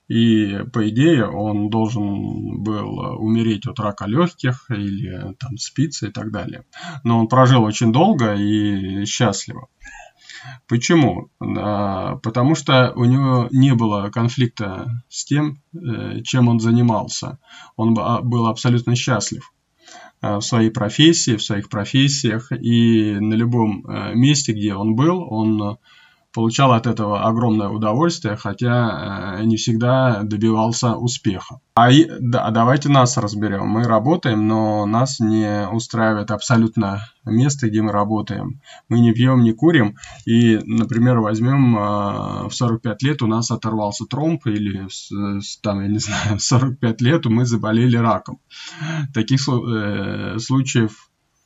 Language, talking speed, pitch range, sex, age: Russian, 125 wpm, 105-125 Hz, male, 20-39